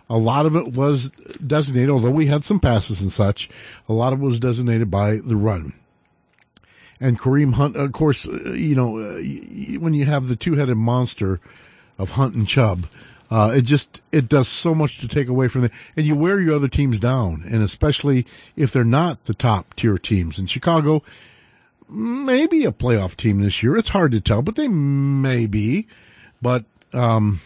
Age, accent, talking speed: 50-69, American, 185 wpm